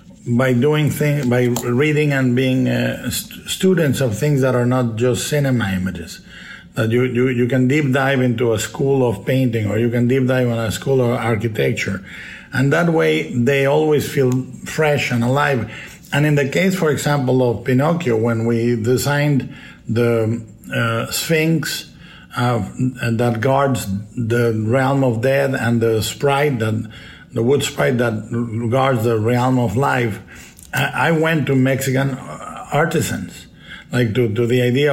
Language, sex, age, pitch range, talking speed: English, male, 50-69, 120-140 Hz, 160 wpm